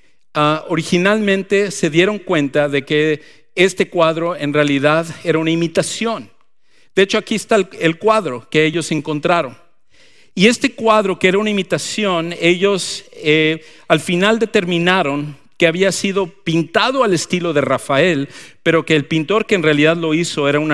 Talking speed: 160 wpm